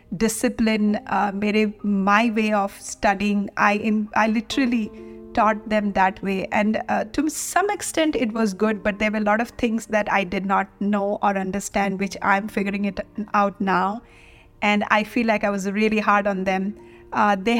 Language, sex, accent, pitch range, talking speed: Hindi, female, native, 200-235 Hz, 190 wpm